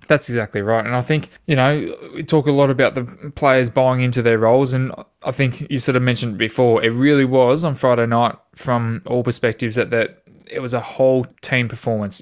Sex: male